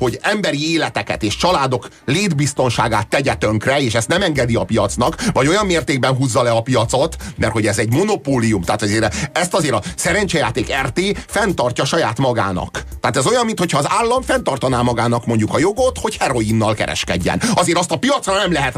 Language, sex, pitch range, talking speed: Hungarian, male, 110-150 Hz, 180 wpm